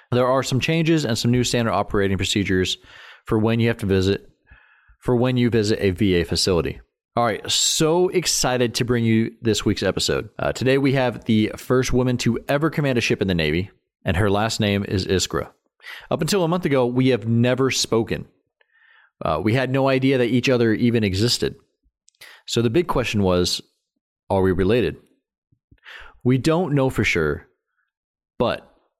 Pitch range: 100-130 Hz